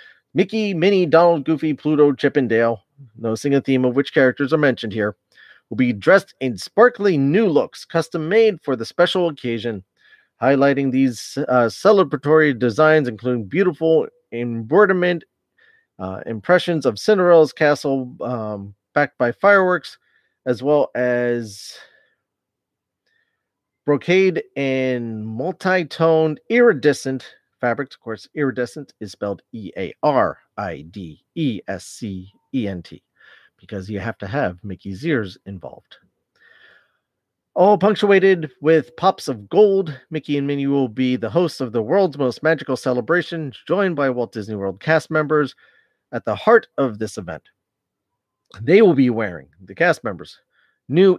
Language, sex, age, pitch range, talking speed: English, male, 30-49, 120-165 Hz, 130 wpm